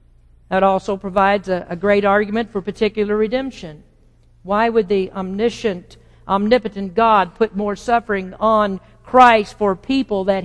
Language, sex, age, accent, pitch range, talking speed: English, female, 50-69, American, 190-255 Hz, 140 wpm